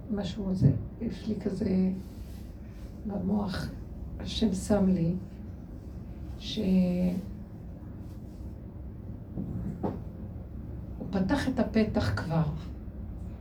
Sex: female